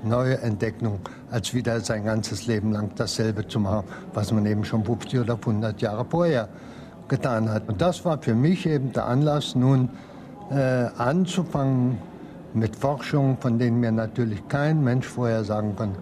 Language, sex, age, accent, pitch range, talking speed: German, male, 60-79, German, 105-130 Hz, 165 wpm